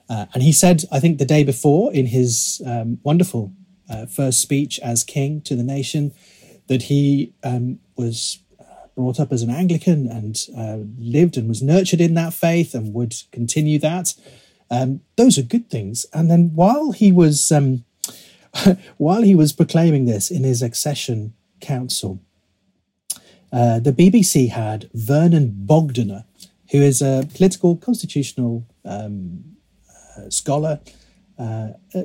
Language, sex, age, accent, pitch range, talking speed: English, male, 40-59, British, 120-165 Hz, 145 wpm